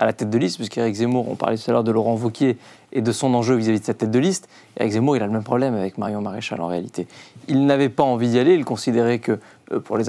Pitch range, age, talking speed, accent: 120-155 Hz, 40-59, 285 wpm, French